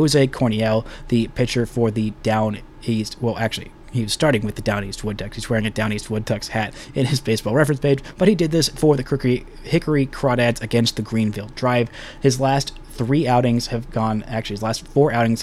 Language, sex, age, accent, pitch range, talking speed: English, male, 20-39, American, 110-140 Hz, 205 wpm